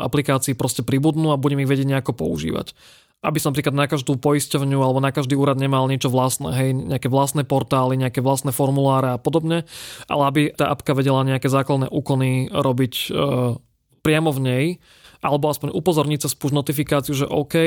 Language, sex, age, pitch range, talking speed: Slovak, male, 20-39, 135-150 Hz, 175 wpm